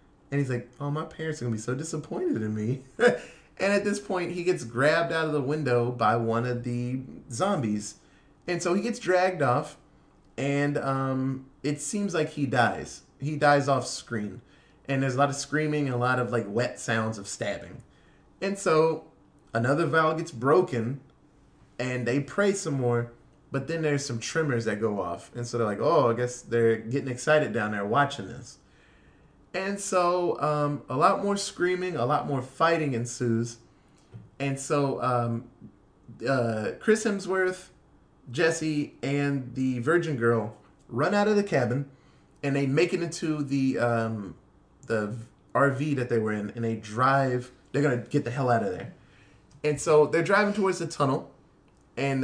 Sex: male